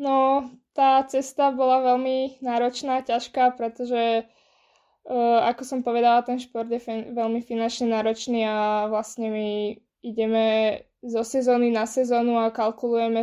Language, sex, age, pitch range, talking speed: Slovak, female, 20-39, 225-250 Hz, 130 wpm